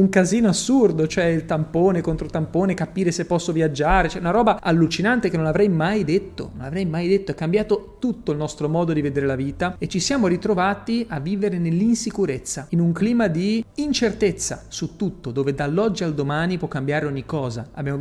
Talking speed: 195 wpm